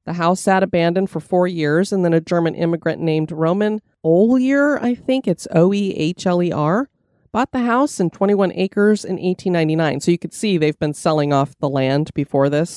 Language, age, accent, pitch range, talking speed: English, 30-49, American, 155-215 Hz, 185 wpm